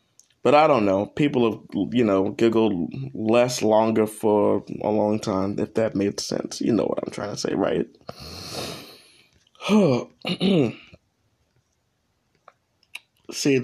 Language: English